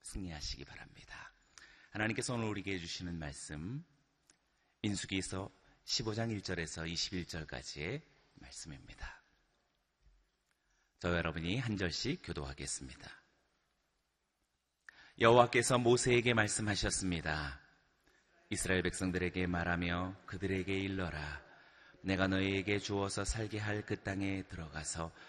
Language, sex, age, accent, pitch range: Korean, male, 30-49, native, 90-115 Hz